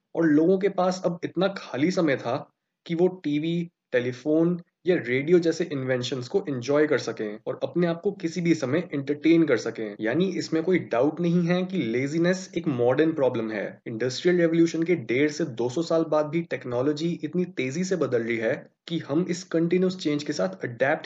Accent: native